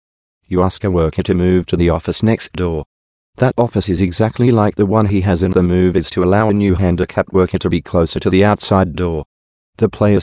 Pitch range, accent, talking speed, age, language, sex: 85-100 Hz, Australian, 230 wpm, 30-49, English, male